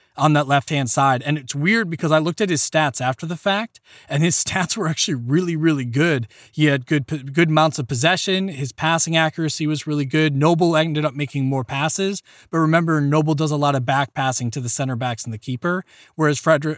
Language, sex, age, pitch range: English, male, 20-39, 135-160 Hz